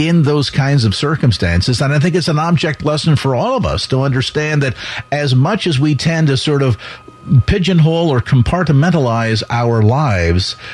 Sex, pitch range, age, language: male, 120-155 Hz, 50-69, English